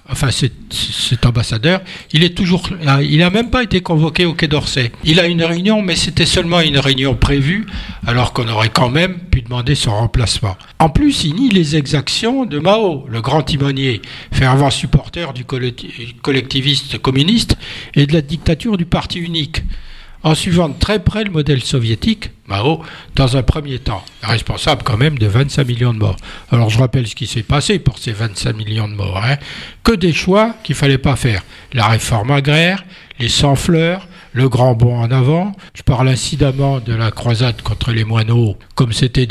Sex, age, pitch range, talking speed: male, 60-79, 115-160 Hz, 185 wpm